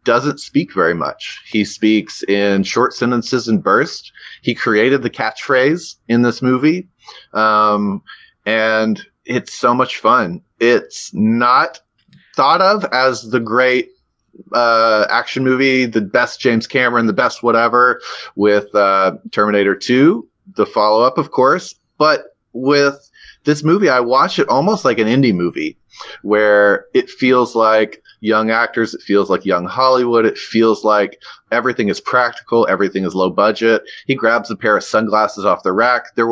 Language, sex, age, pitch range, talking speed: English, male, 30-49, 105-130 Hz, 150 wpm